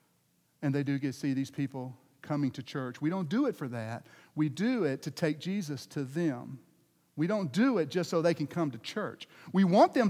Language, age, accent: English, 50-69, American